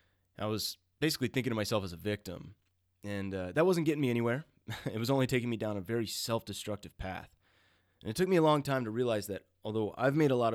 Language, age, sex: English, 20-39, male